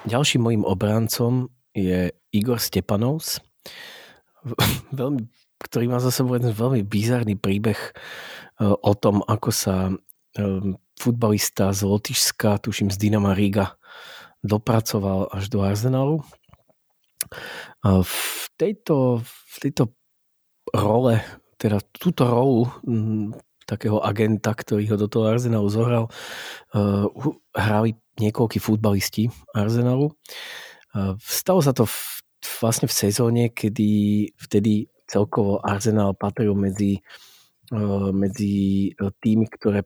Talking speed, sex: 95 wpm, male